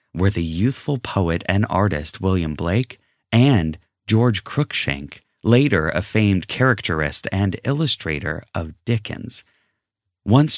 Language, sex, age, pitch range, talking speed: English, male, 30-49, 85-115 Hz, 115 wpm